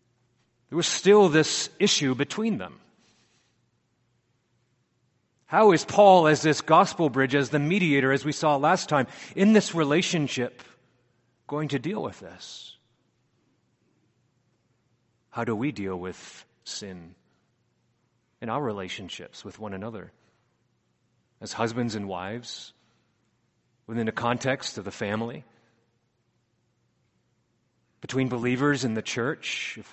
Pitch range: 115-145 Hz